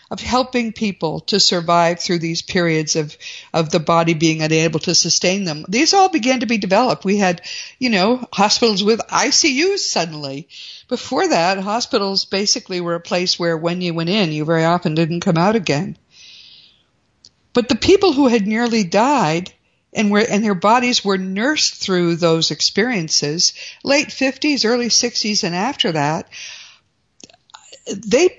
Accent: American